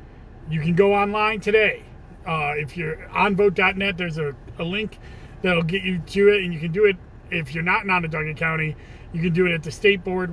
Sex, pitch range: male, 160-195 Hz